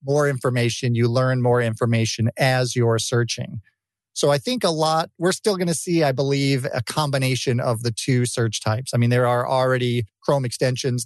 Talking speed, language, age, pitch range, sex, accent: 190 wpm, English, 40-59, 120-140 Hz, male, American